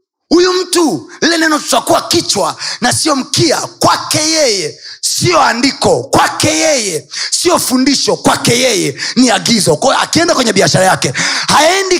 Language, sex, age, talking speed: Swahili, male, 30-49, 135 wpm